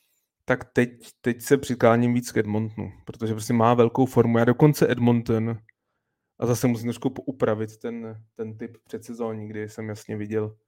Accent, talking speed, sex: native, 155 wpm, male